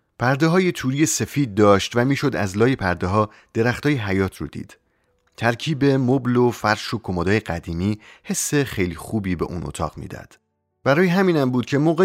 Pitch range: 95-135 Hz